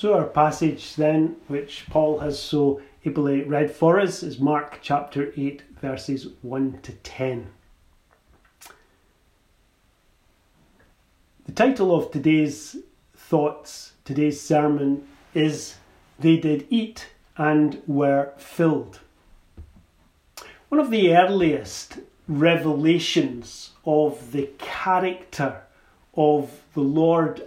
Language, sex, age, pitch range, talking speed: English, male, 40-59, 140-165 Hz, 100 wpm